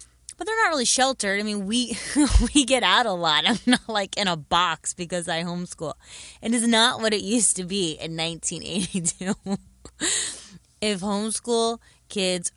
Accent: American